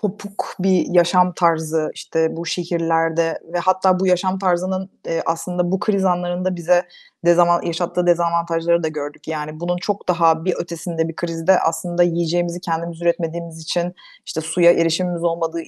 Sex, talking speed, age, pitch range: female, 150 wpm, 30-49, 170-190 Hz